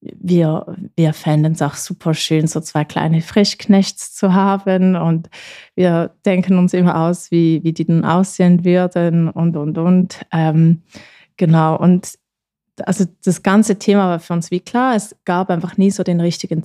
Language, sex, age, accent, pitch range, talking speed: German, female, 20-39, German, 170-200 Hz, 170 wpm